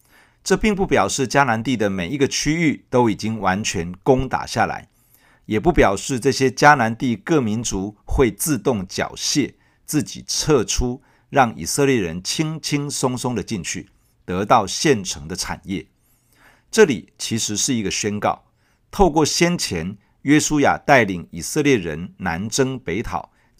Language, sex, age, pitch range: Chinese, male, 50-69, 100-140 Hz